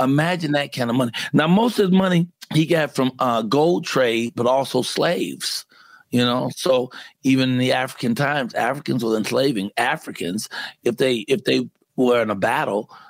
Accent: American